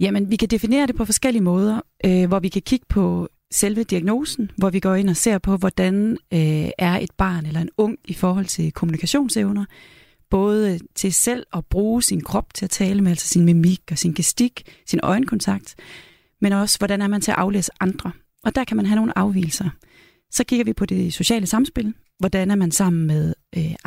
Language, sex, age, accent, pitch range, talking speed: Danish, female, 30-49, native, 180-220 Hz, 210 wpm